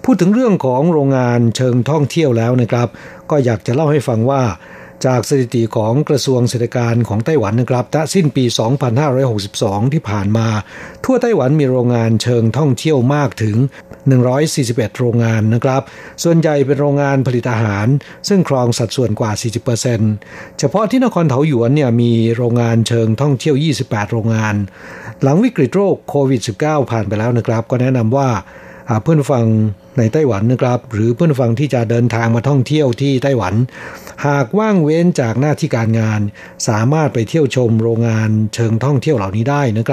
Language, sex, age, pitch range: Thai, male, 60-79, 115-145 Hz